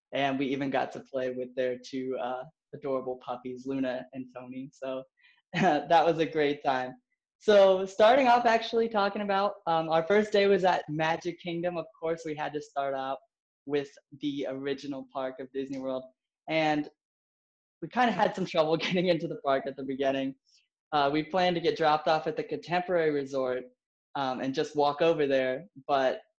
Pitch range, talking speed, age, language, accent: 130-165 Hz, 185 wpm, 20-39, English, American